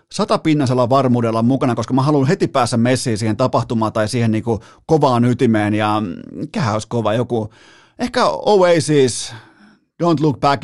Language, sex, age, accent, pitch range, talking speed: Finnish, male, 30-49, native, 120-160 Hz, 140 wpm